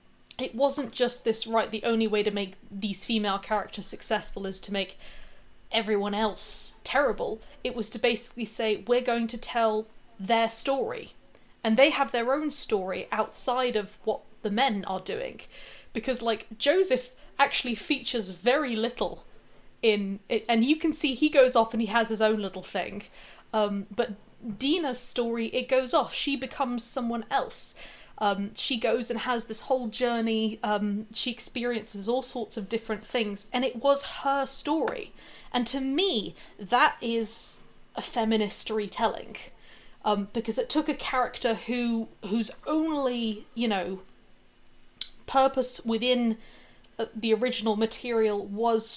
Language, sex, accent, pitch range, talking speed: English, female, British, 215-250 Hz, 150 wpm